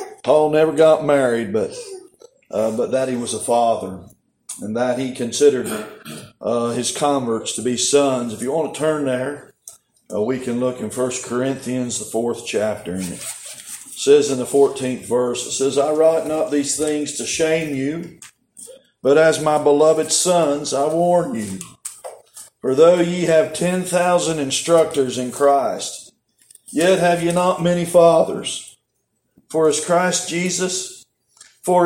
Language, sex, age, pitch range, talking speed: English, male, 40-59, 135-175 Hz, 155 wpm